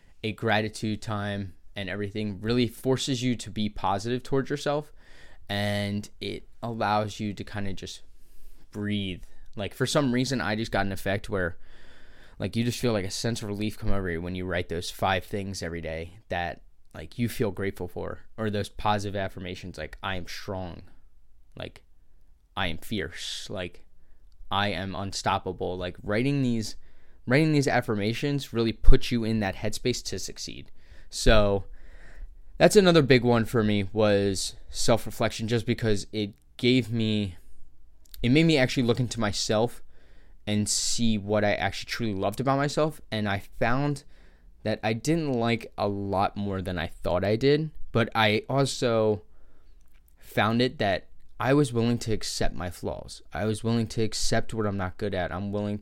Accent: American